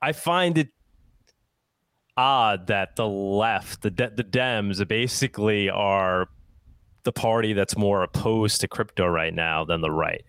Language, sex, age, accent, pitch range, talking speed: English, male, 20-39, American, 100-120 Hz, 145 wpm